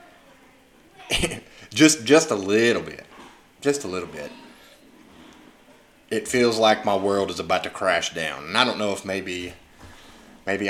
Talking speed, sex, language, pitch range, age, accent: 145 wpm, male, English, 95-120 Hz, 30-49, American